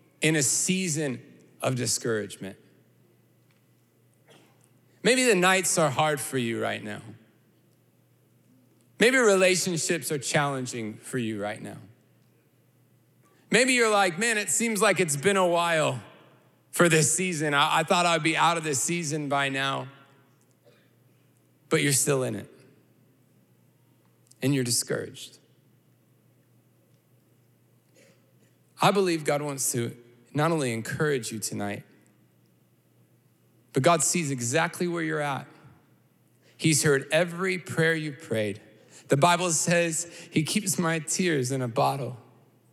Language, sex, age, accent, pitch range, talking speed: English, male, 30-49, American, 125-170 Hz, 125 wpm